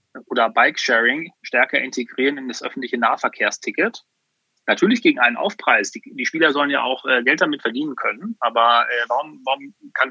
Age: 30-49